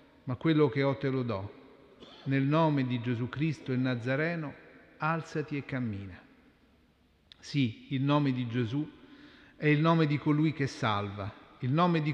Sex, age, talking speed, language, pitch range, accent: male, 40-59, 160 wpm, Italian, 120-150 Hz, native